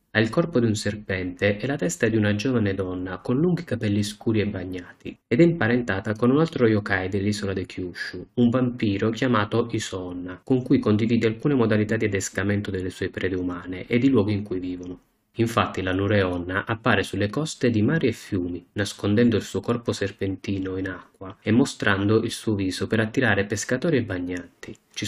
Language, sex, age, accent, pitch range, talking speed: Italian, male, 30-49, native, 95-120 Hz, 185 wpm